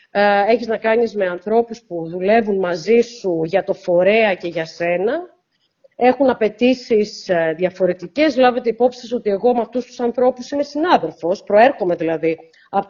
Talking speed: 145 wpm